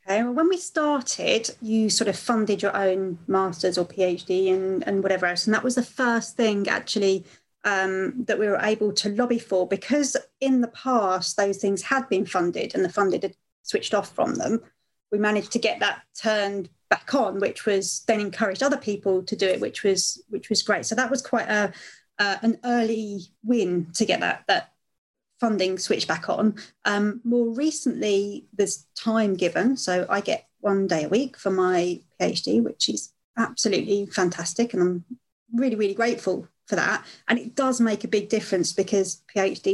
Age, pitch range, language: 30-49, 190-235 Hz, English